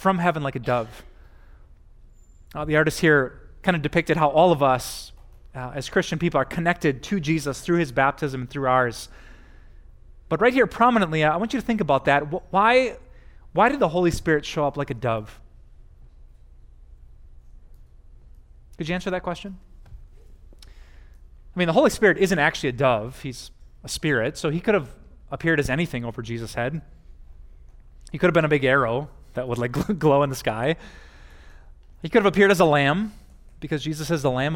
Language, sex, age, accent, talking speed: English, male, 30-49, American, 185 wpm